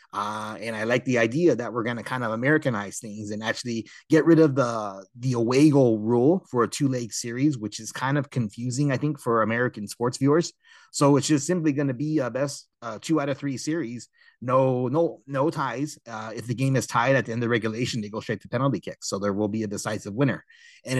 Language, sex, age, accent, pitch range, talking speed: English, male, 30-49, American, 110-150 Hz, 240 wpm